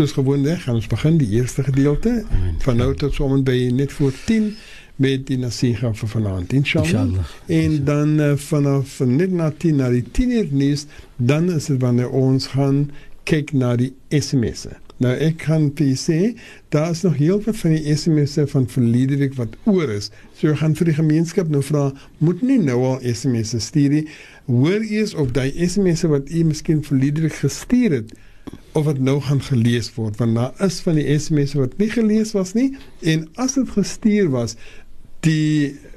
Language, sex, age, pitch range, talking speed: English, male, 60-79, 130-175 Hz, 190 wpm